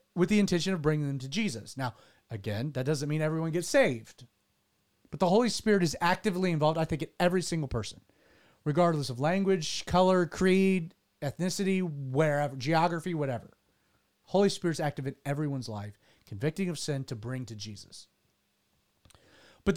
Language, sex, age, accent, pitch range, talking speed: English, male, 40-59, American, 140-185 Hz, 160 wpm